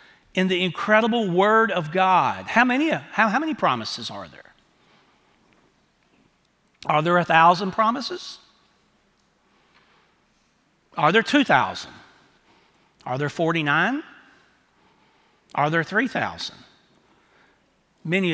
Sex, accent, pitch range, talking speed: male, American, 140-190 Hz, 90 wpm